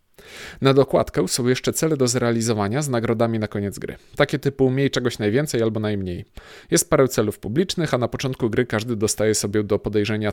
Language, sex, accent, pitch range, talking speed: Polish, male, native, 105-135 Hz, 185 wpm